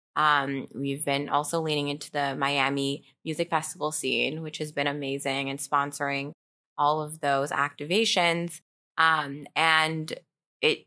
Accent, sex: American, female